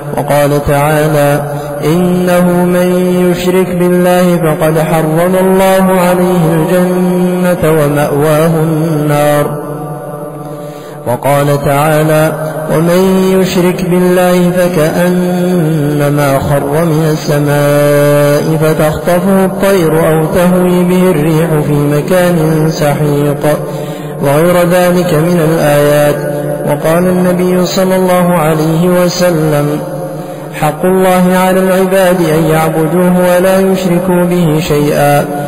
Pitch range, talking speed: 150-180 Hz, 85 wpm